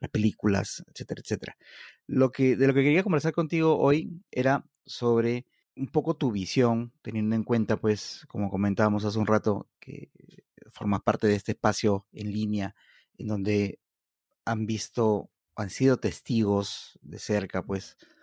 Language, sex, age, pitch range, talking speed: Spanish, male, 30-49, 100-115 Hz, 150 wpm